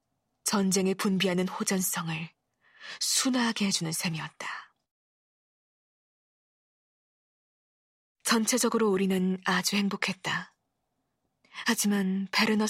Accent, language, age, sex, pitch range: native, Korean, 20-39, female, 180-210 Hz